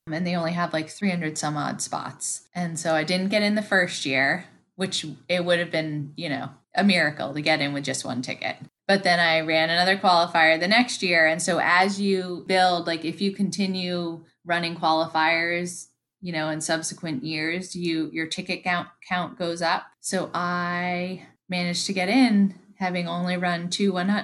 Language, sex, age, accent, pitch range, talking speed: English, female, 10-29, American, 150-185 Hz, 190 wpm